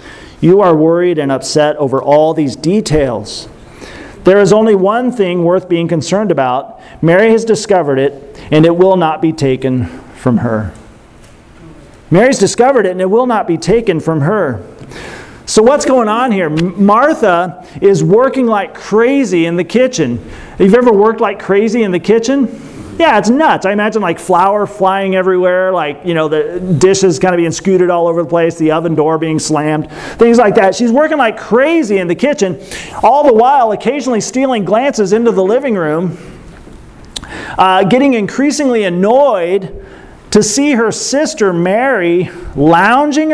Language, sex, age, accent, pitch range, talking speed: English, male, 40-59, American, 165-220 Hz, 170 wpm